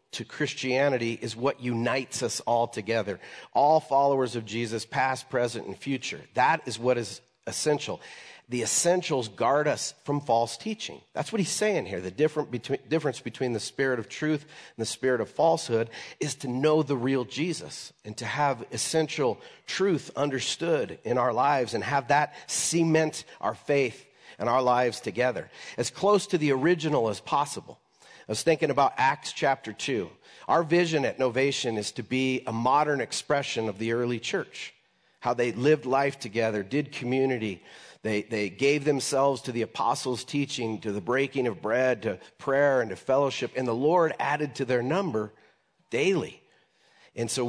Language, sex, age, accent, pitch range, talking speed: English, male, 40-59, American, 120-150 Hz, 170 wpm